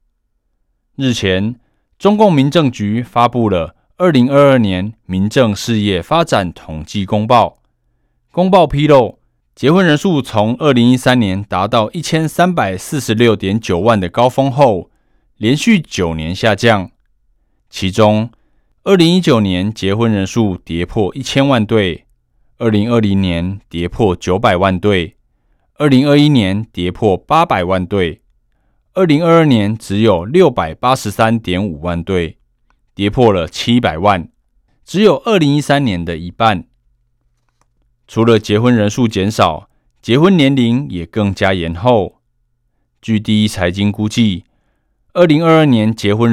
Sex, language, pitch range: male, Chinese, 95-125 Hz